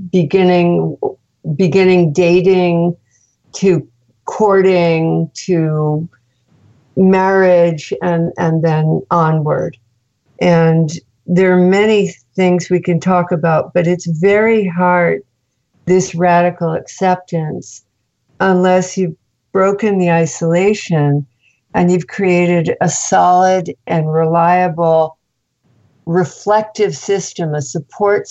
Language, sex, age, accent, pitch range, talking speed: English, female, 60-79, American, 155-185 Hz, 90 wpm